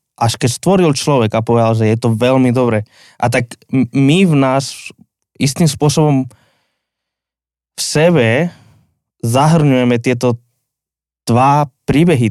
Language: Slovak